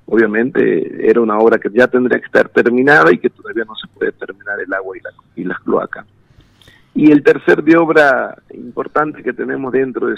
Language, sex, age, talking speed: Spanish, male, 50-69, 200 wpm